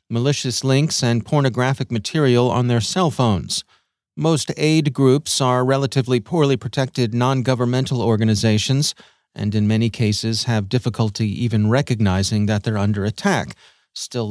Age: 40-59